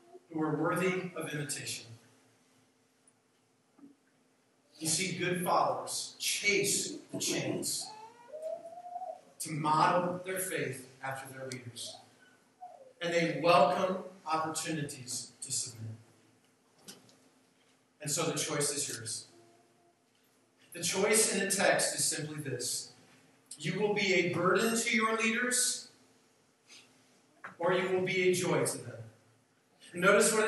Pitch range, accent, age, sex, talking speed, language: 150-200 Hz, American, 40-59, male, 110 wpm, English